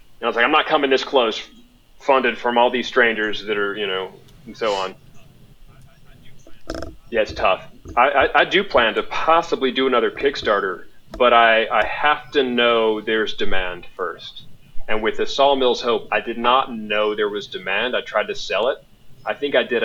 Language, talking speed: English, 195 wpm